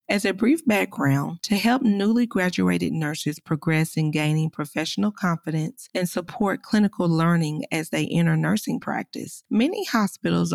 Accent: American